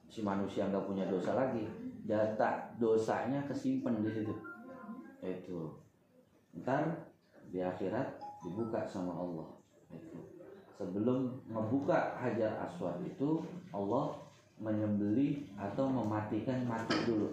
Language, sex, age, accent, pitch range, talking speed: Indonesian, male, 30-49, native, 100-130 Hz, 105 wpm